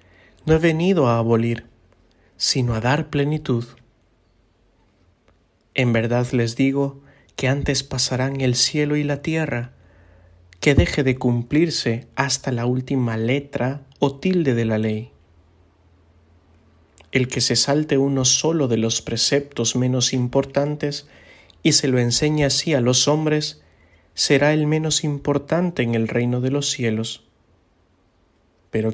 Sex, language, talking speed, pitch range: male, English, 135 wpm, 100-135 Hz